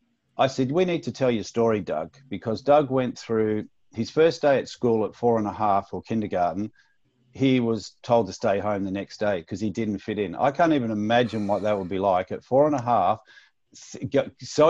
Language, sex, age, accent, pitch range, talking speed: English, male, 50-69, Australian, 105-130 Hz, 220 wpm